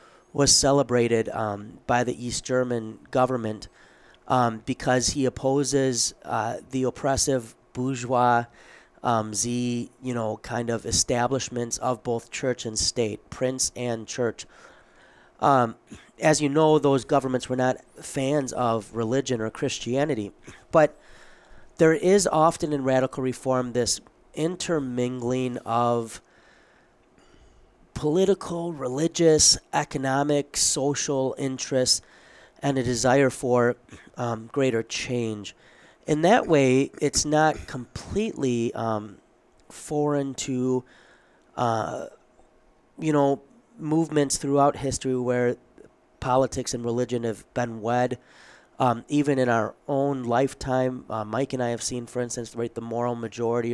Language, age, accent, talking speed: English, 30-49, American, 120 wpm